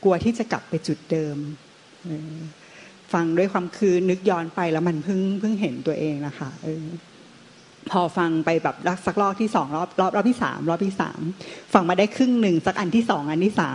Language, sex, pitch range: Thai, female, 160-200 Hz